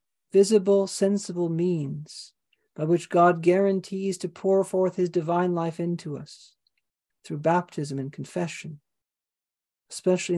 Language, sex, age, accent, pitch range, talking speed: English, male, 50-69, American, 165-195 Hz, 115 wpm